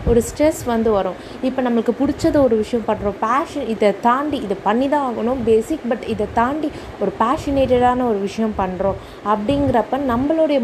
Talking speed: 160 wpm